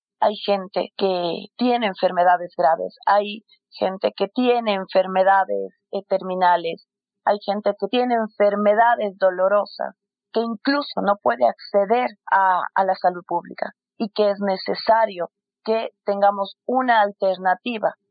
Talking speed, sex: 120 wpm, female